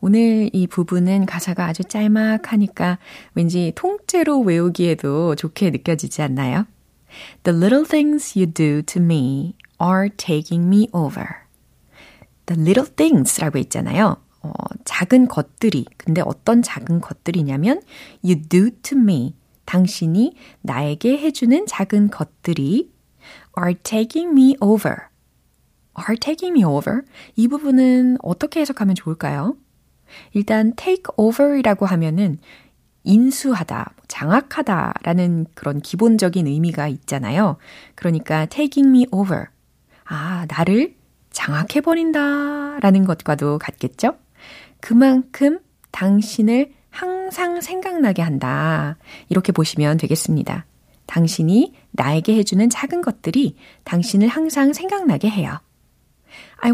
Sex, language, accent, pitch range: female, Korean, native, 165-255 Hz